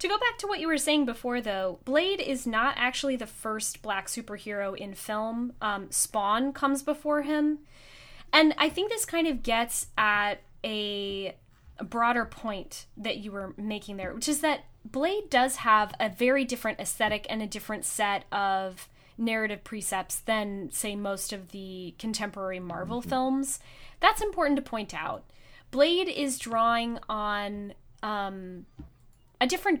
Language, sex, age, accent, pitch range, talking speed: English, female, 10-29, American, 205-265 Hz, 160 wpm